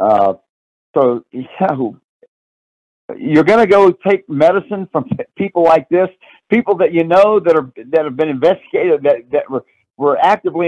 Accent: American